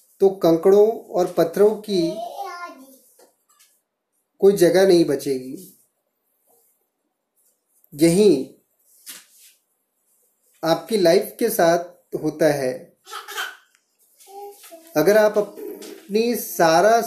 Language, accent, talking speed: Hindi, native, 70 wpm